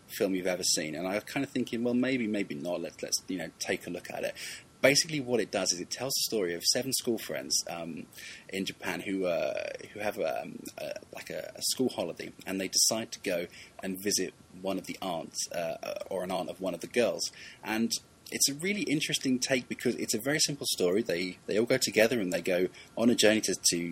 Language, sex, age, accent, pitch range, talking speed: English, male, 20-39, British, 95-125 Hz, 235 wpm